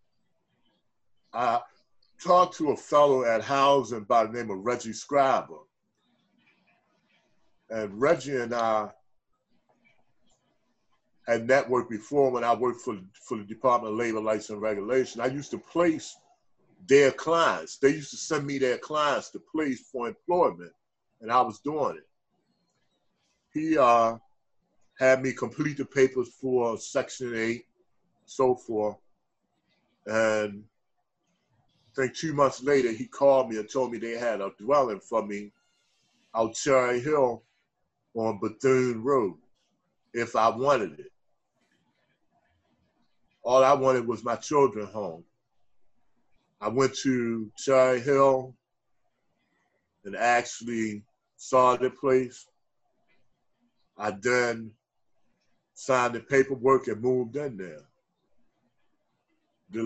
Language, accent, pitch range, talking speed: English, American, 115-135 Hz, 120 wpm